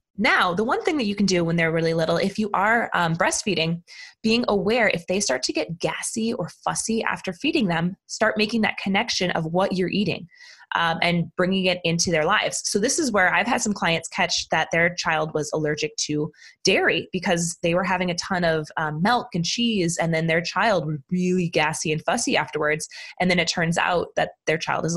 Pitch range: 165-215 Hz